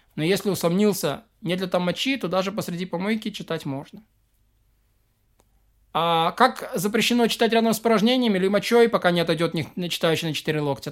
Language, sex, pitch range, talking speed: Russian, male, 170-215 Hz, 160 wpm